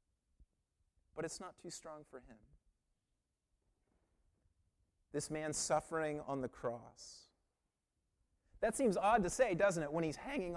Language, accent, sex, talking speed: English, American, male, 130 wpm